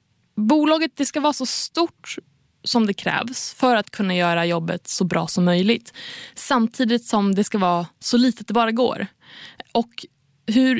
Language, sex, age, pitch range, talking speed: Swedish, female, 20-39, 190-250 Hz, 160 wpm